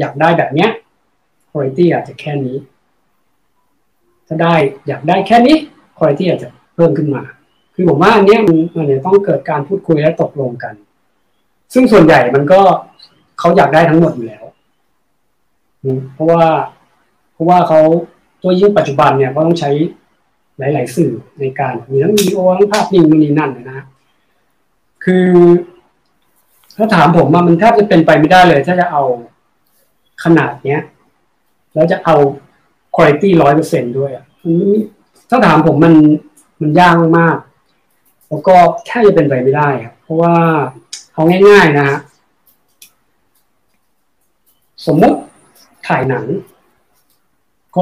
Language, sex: Thai, male